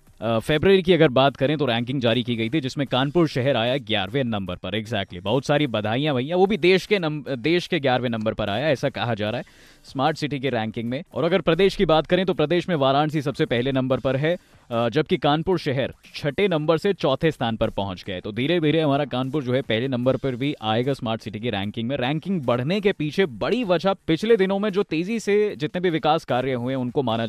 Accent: native